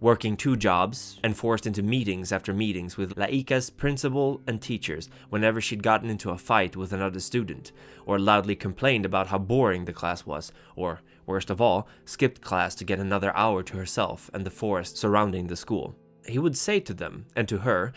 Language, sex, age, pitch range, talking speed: English, male, 20-39, 95-125 Hz, 195 wpm